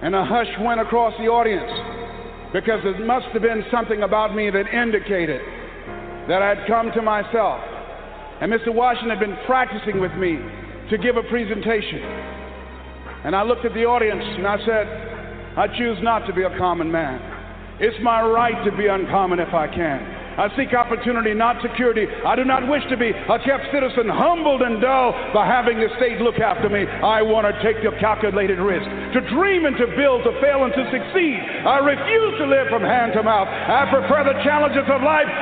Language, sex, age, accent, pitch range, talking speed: English, male, 50-69, American, 215-275 Hz, 195 wpm